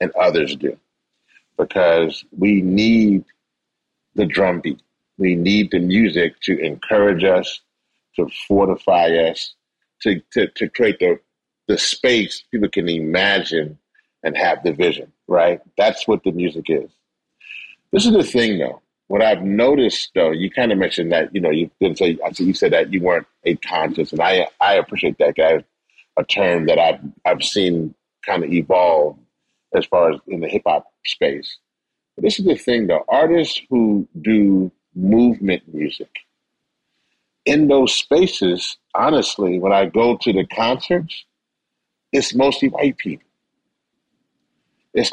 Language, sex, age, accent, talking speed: English, male, 40-59, American, 150 wpm